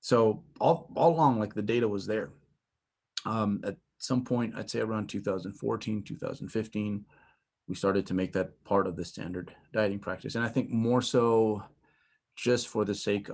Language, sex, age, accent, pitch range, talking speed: English, male, 30-49, American, 95-115 Hz, 170 wpm